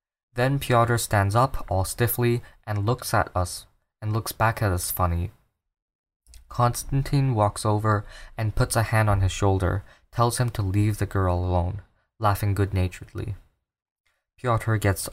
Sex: male